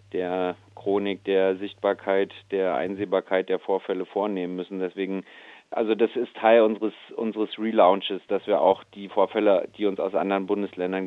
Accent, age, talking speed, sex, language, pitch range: German, 40-59, 150 wpm, male, German, 90-100 Hz